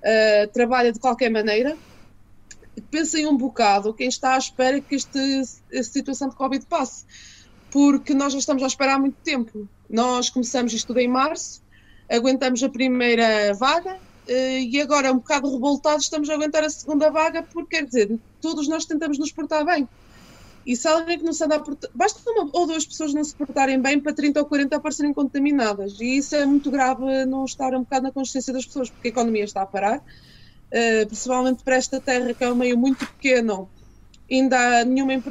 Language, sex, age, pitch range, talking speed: Portuguese, female, 20-39, 240-285 Hz, 195 wpm